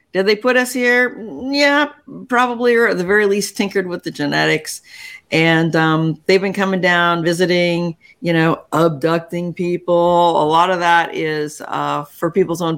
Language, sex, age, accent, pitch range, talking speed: English, female, 50-69, American, 155-195 Hz, 170 wpm